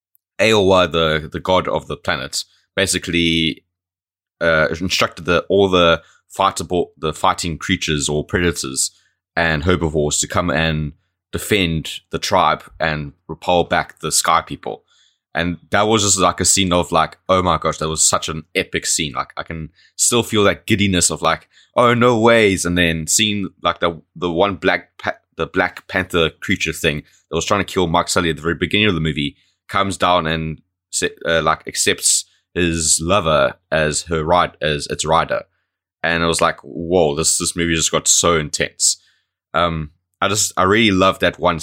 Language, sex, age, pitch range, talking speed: English, male, 20-39, 80-95 Hz, 180 wpm